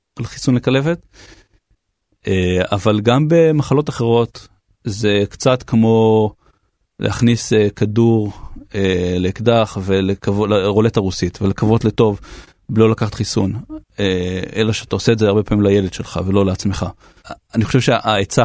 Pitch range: 100-125 Hz